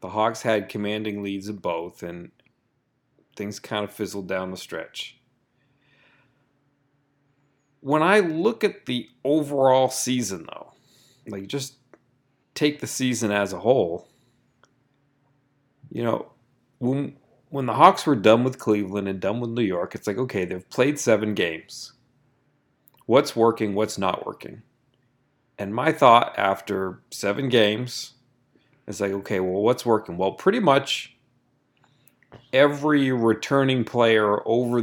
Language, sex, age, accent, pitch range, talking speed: English, male, 40-59, American, 110-135 Hz, 135 wpm